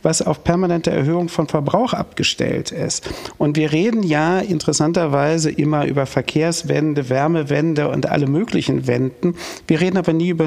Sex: male